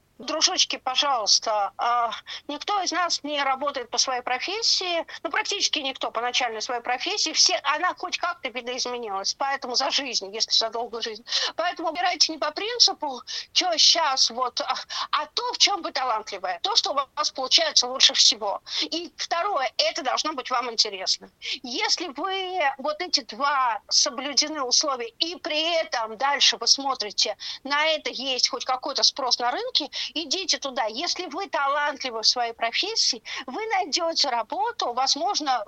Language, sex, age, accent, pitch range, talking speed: Russian, female, 50-69, native, 255-345 Hz, 155 wpm